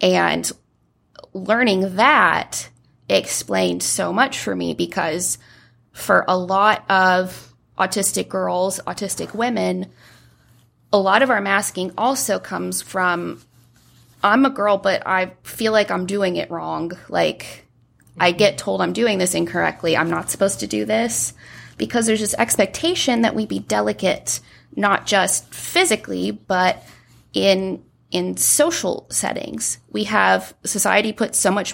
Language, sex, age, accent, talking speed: English, female, 20-39, American, 135 wpm